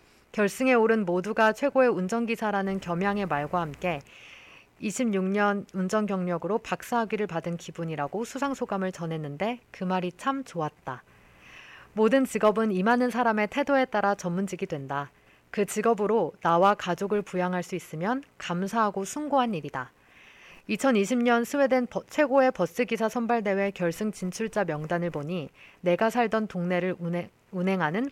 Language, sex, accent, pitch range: Korean, female, native, 170-225 Hz